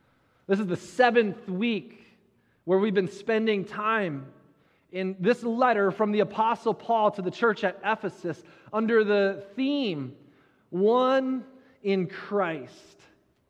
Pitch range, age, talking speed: 185-230 Hz, 30-49, 125 wpm